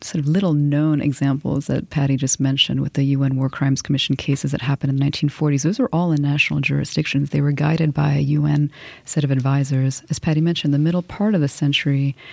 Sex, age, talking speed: female, 30-49, 220 wpm